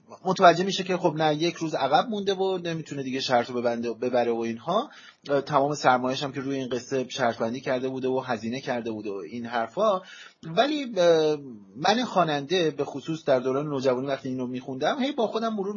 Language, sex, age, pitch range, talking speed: Persian, male, 30-49, 125-165 Hz, 190 wpm